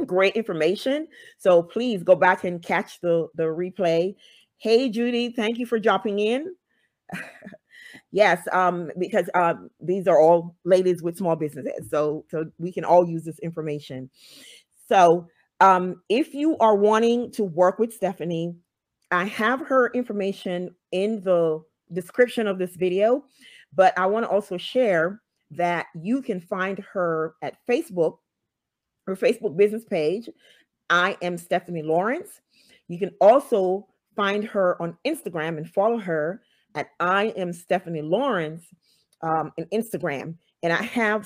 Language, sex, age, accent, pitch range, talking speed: English, female, 40-59, American, 170-210 Hz, 145 wpm